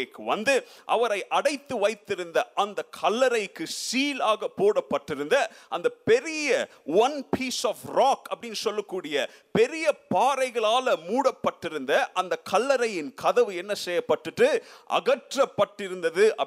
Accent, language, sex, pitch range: native, Tamil, male, 210-350 Hz